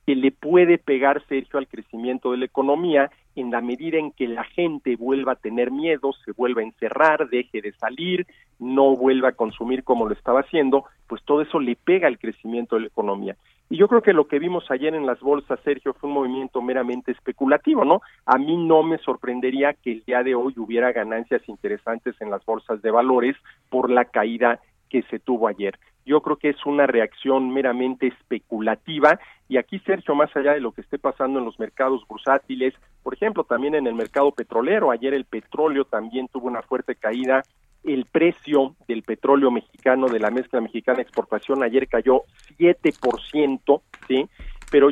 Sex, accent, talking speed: male, Mexican, 190 wpm